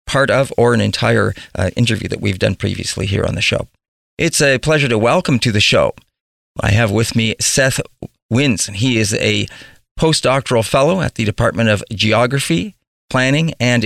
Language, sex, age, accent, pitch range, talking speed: English, male, 40-59, American, 110-140 Hz, 180 wpm